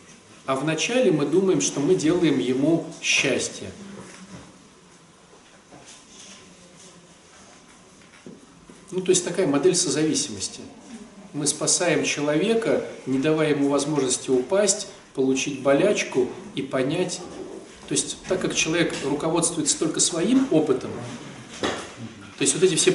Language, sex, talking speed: Russian, male, 105 wpm